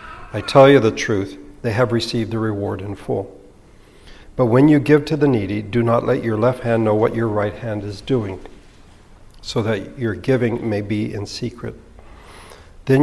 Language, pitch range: English, 105-135 Hz